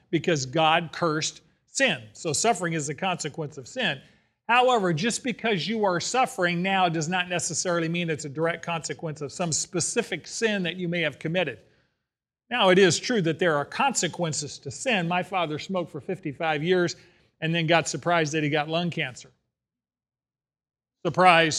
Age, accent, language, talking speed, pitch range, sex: 40-59, American, English, 170 wpm, 155-200 Hz, male